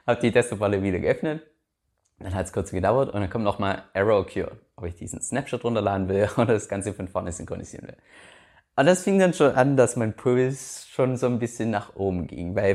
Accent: German